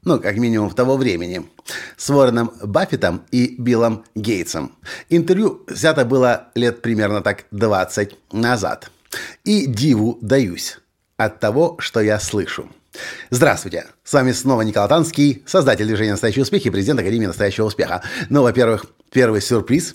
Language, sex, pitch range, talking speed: Russian, male, 110-145 Hz, 140 wpm